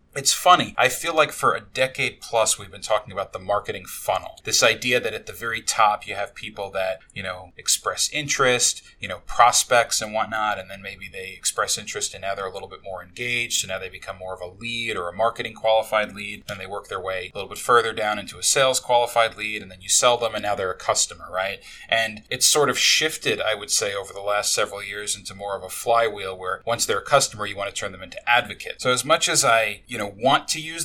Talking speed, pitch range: 250 wpm, 105-130 Hz